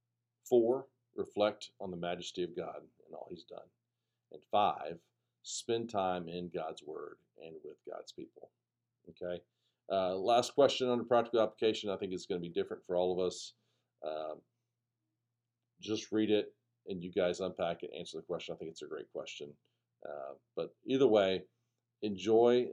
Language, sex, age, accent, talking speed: English, male, 50-69, American, 165 wpm